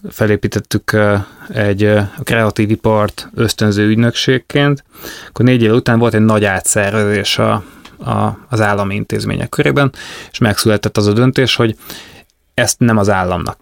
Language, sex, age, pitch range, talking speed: Hungarian, male, 20-39, 100-115 Hz, 125 wpm